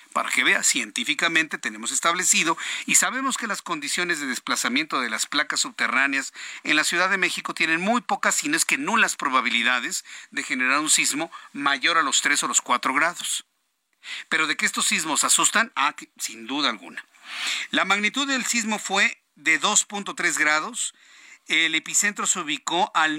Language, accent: Spanish, Mexican